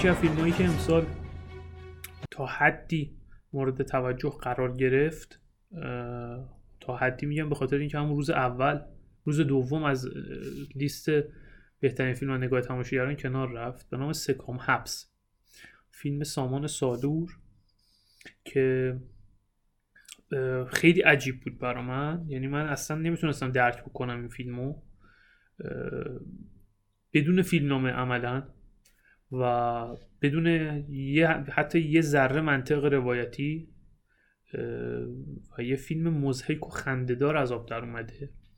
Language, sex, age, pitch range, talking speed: Persian, male, 30-49, 125-150 Hz, 115 wpm